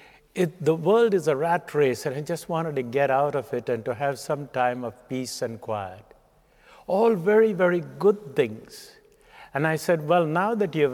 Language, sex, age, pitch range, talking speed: English, male, 60-79, 130-180 Hz, 205 wpm